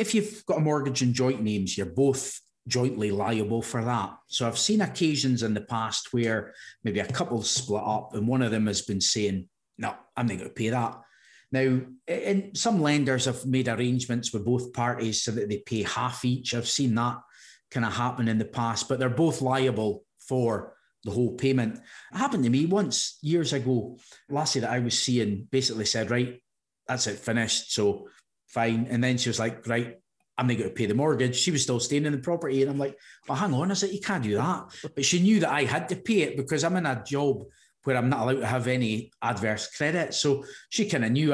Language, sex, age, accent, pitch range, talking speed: English, male, 30-49, British, 115-140 Hz, 225 wpm